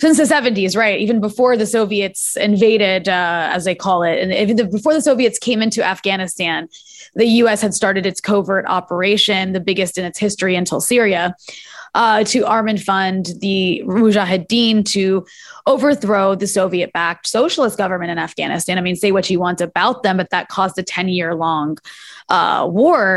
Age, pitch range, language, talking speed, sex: 20-39, 185-225 Hz, English, 170 wpm, female